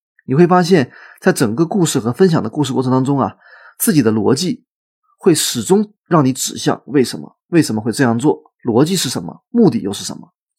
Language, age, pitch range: Chinese, 30-49, 130-185 Hz